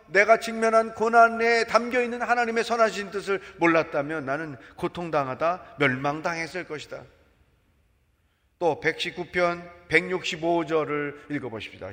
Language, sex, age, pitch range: Korean, male, 40-59, 165-235 Hz